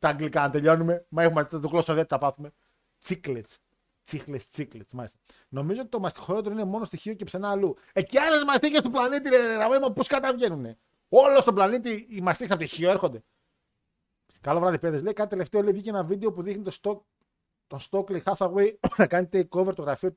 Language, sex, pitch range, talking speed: Greek, male, 135-190 Hz, 160 wpm